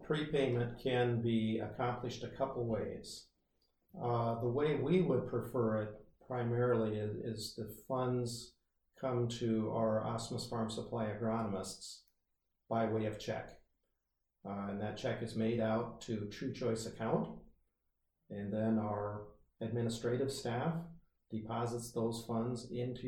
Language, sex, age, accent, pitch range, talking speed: English, male, 50-69, American, 105-120 Hz, 130 wpm